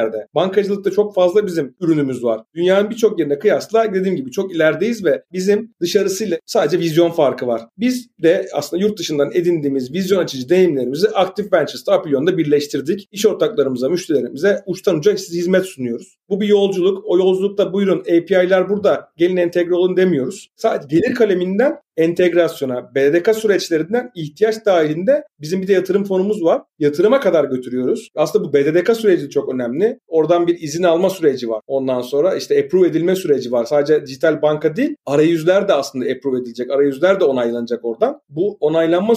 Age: 40-59